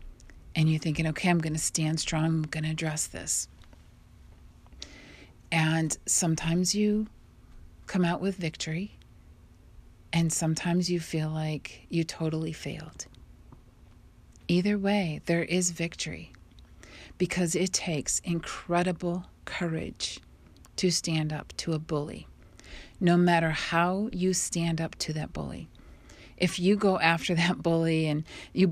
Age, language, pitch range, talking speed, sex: 40-59, English, 120-175 Hz, 130 wpm, female